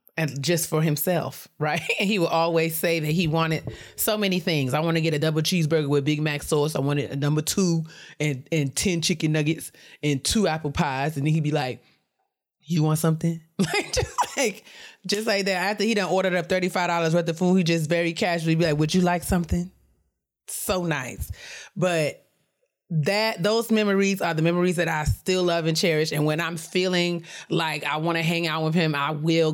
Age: 30-49